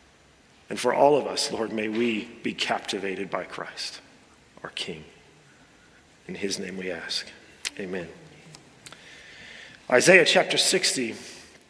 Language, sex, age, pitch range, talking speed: English, male, 40-59, 145-175 Hz, 120 wpm